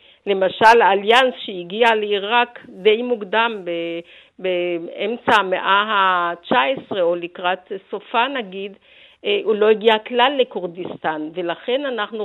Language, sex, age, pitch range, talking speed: Hebrew, female, 50-69, 190-240 Hz, 100 wpm